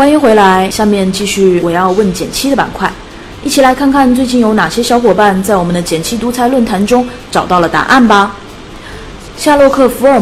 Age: 30-49